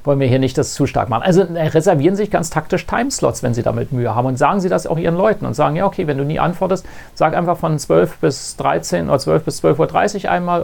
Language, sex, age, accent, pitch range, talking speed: German, male, 40-59, German, 140-170 Hz, 260 wpm